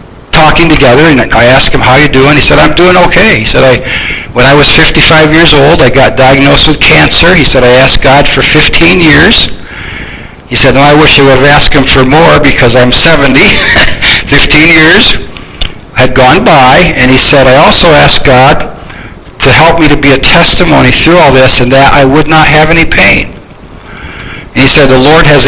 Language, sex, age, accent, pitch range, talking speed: English, male, 60-79, American, 130-155 Hz, 205 wpm